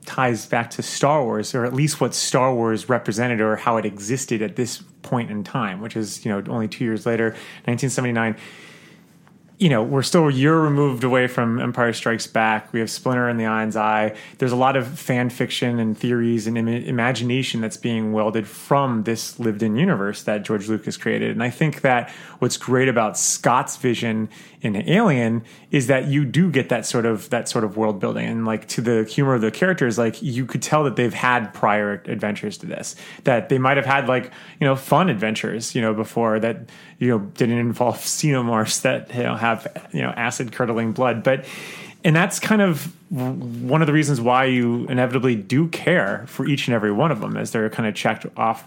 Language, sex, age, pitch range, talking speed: English, male, 30-49, 110-135 Hz, 210 wpm